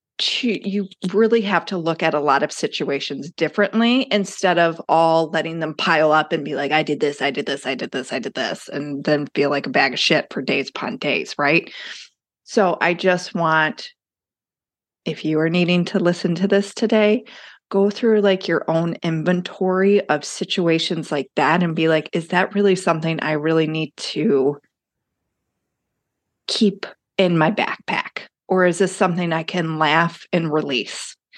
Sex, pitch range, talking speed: female, 155-195 Hz, 180 wpm